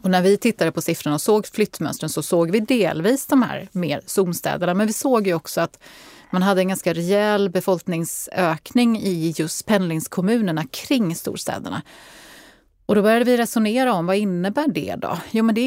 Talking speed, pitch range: 180 wpm, 165-215 Hz